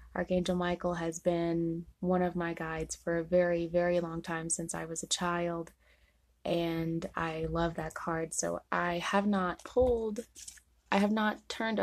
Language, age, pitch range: English, 20-39, 165-185 Hz